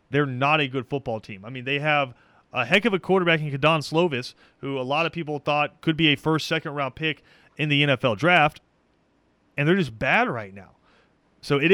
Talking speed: 220 wpm